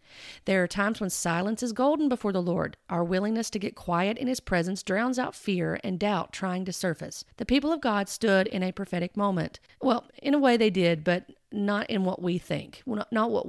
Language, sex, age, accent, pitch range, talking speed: English, female, 40-59, American, 185-245 Hz, 220 wpm